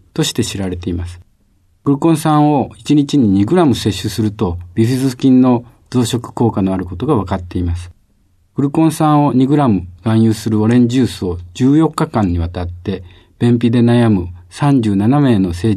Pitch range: 95-135 Hz